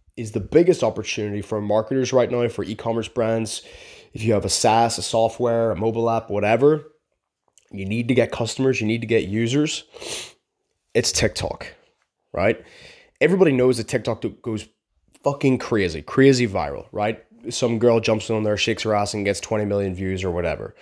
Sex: male